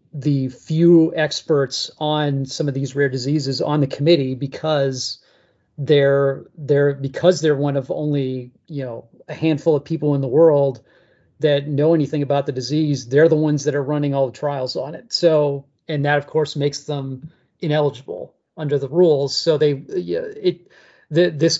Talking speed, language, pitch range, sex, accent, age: 170 wpm, English, 135-155 Hz, male, American, 40-59